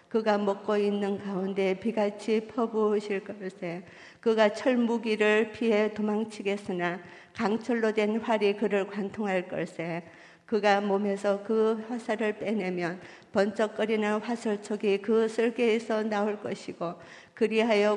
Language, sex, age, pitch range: Korean, female, 50-69, 190-225 Hz